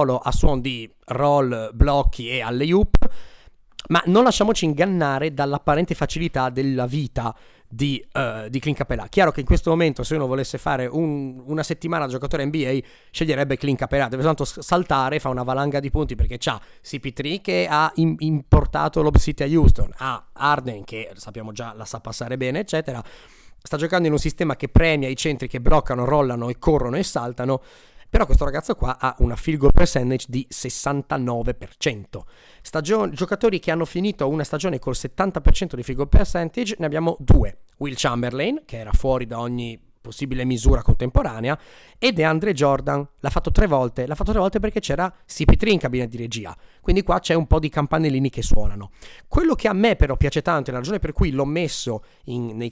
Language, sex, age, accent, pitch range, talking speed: Italian, male, 30-49, native, 125-160 Hz, 185 wpm